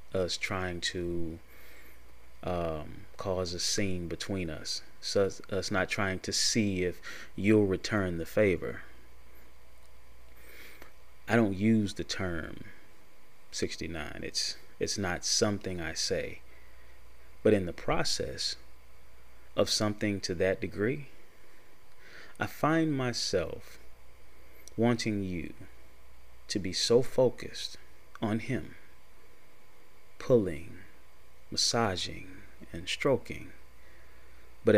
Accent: American